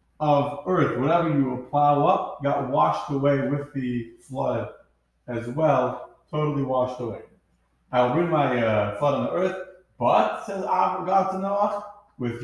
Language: English